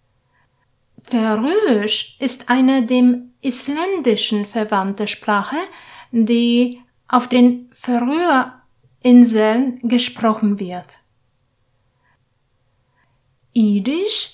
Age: 50-69